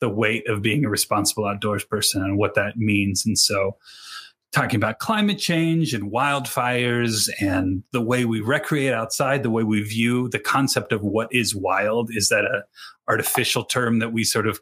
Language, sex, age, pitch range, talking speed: English, male, 30-49, 110-130 Hz, 185 wpm